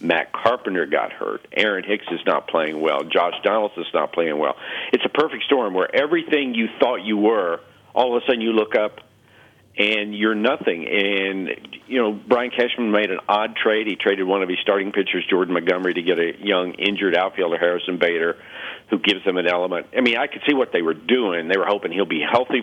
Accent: American